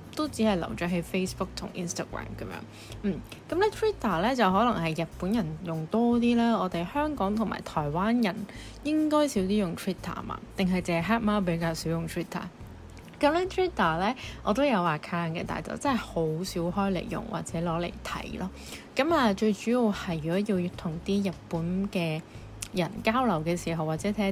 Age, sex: 20-39, female